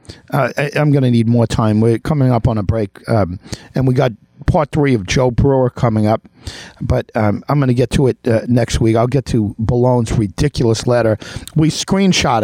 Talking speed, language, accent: 210 wpm, English, American